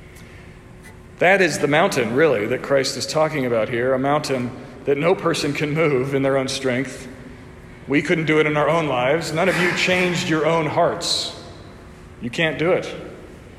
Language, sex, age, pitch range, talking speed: English, male, 40-59, 145-175 Hz, 180 wpm